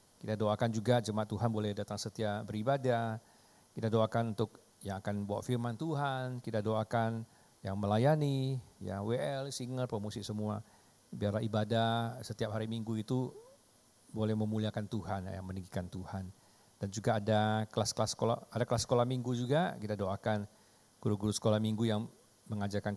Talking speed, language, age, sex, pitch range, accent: 145 wpm, Indonesian, 40-59, male, 105-120 Hz, native